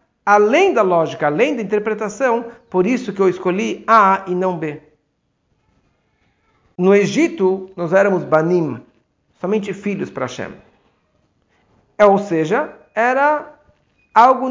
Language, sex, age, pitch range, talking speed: English, male, 50-69, 165-205 Hz, 120 wpm